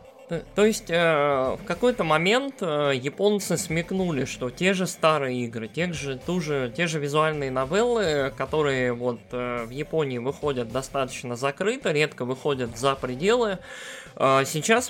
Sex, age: male, 20-39